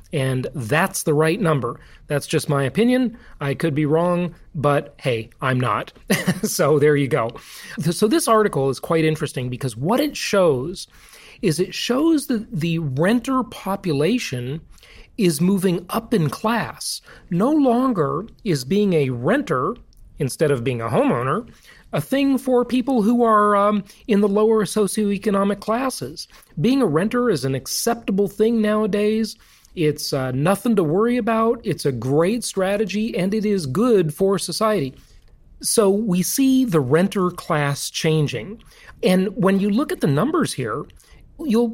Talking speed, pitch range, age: 150 wpm, 160-230 Hz, 40-59